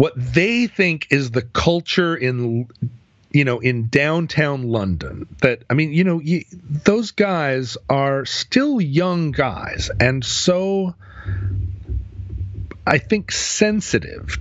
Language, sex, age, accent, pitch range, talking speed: English, male, 40-59, American, 105-150 Hz, 120 wpm